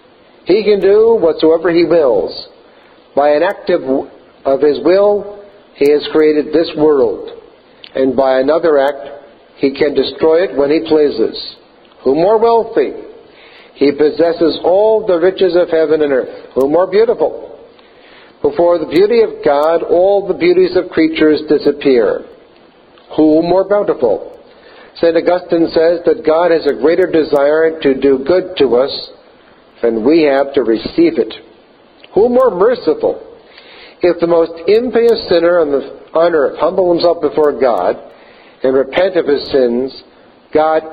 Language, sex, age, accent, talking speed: English, male, 60-79, American, 145 wpm